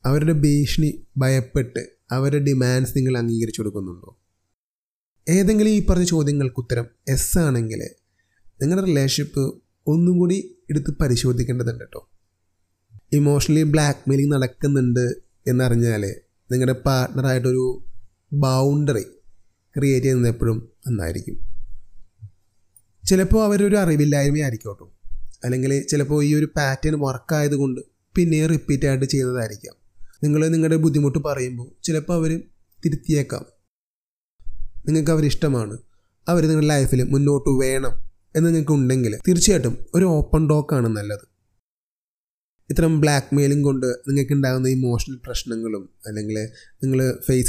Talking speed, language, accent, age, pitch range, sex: 100 wpm, Malayalam, native, 30-49, 105-150 Hz, male